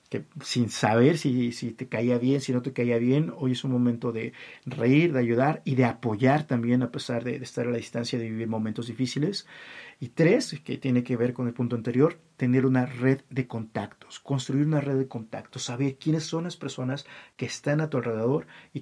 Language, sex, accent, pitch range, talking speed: Spanish, male, Mexican, 125-155 Hz, 215 wpm